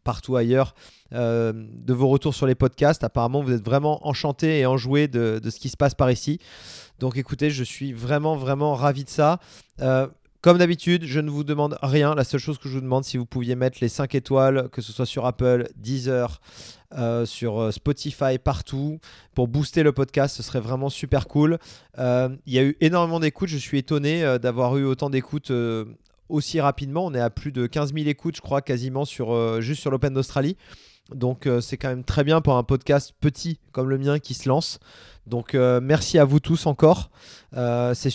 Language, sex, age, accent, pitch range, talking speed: French, male, 30-49, French, 125-150 Hz, 210 wpm